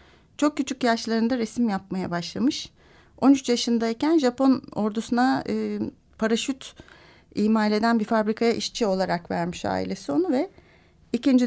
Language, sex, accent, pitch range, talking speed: Turkish, female, native, 205-250 Hz, 115 wpm